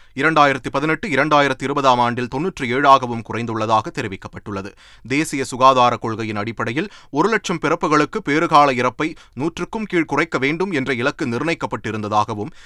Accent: native